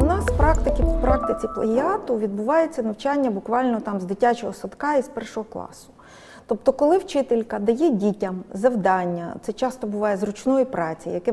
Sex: female